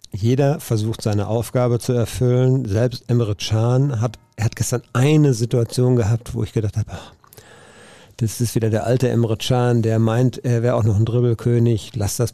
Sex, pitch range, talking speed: male, 110-125 Hz, 185 wpm